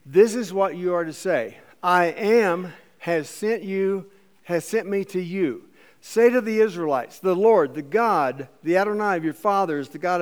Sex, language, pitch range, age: male, English, 165-220 Hz, 60-79